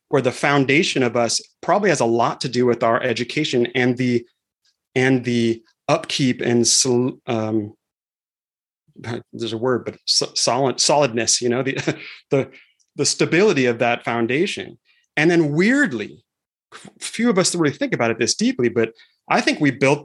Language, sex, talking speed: English, male, 160 wpm